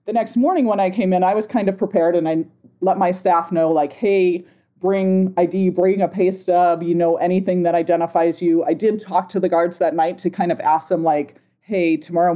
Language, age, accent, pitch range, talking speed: English, 30-49, American, 170-205 Hz, 235 wpm